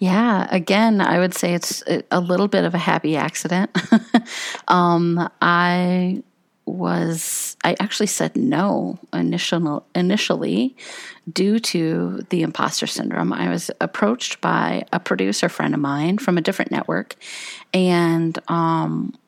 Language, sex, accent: English, female, American